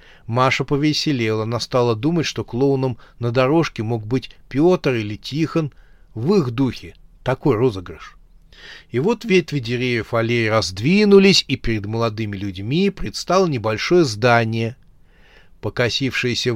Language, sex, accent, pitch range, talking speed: Russian, male, native, 115-145 Hz, 115 wpm